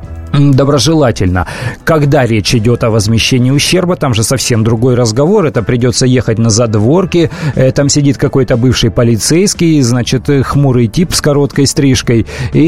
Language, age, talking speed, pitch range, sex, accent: Russian, 30-49, 135 wpm, 115-145 Hz, male, native